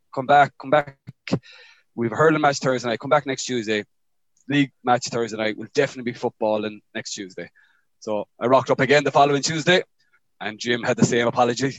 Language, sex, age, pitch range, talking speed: English, male, 20-39, 115-140 Hz, 195 wpm